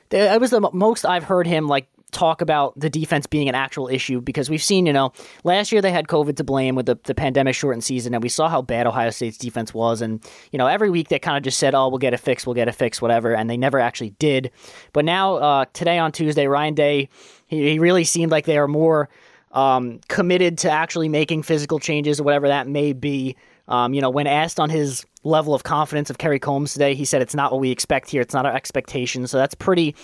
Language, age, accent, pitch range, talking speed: English, 20-39, American, 130-160 Hz, 250 wpm